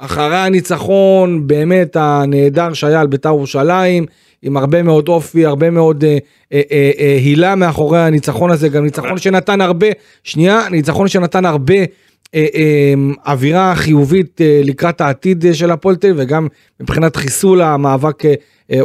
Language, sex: Hebrew, male